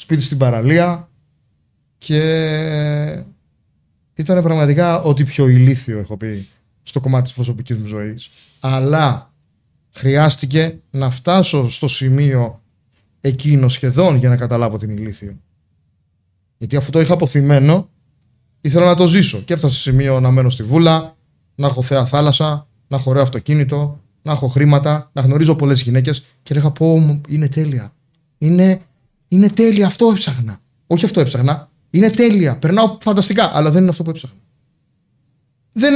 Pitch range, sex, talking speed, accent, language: 130-160 Hz, male, 140 wpm, native, Greek